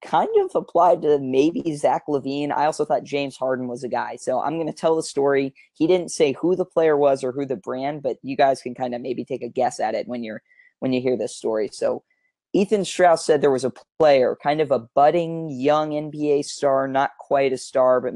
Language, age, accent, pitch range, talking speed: English, 20-39, American, 125-155 Hz, 235 wpm